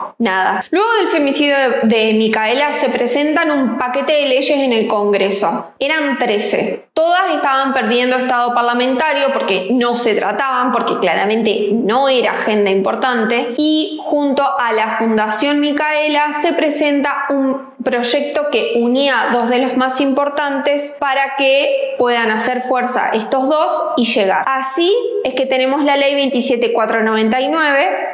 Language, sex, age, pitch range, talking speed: Spanish, female, 20-39, 230-295 Hz, 140 wpm